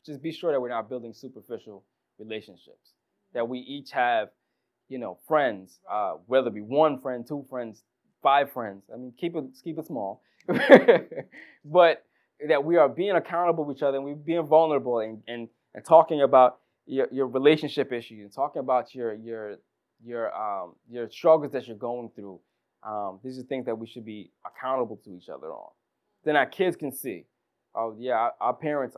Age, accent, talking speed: 20-39, American, 190 wpm